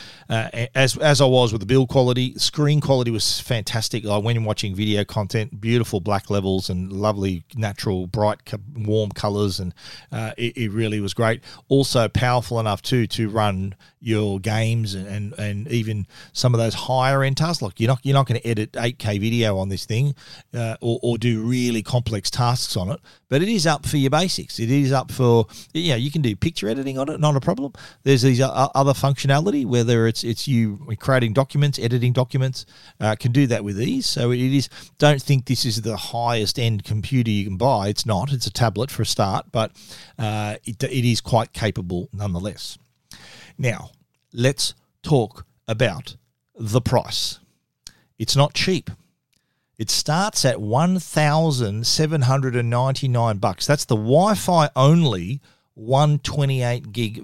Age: 40-59